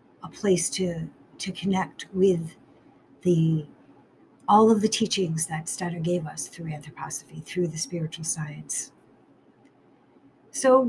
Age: 50-69